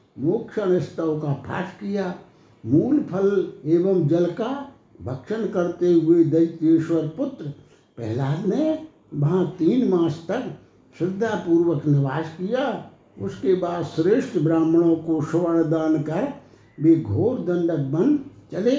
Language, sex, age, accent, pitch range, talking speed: Hindi, male, 60-79, native, 160-190 Hz, 120 wpm